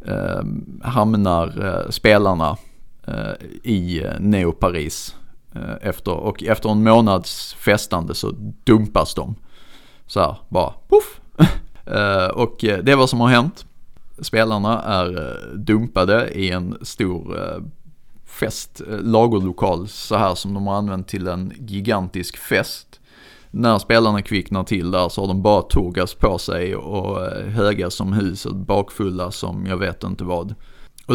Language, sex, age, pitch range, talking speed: Swedish, male, 30-49, 95-110 Hz, 135 wpm